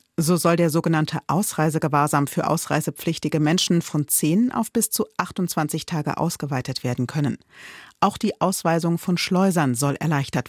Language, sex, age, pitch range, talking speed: German, female, 40-59, 150-190 Hz, 145 wpm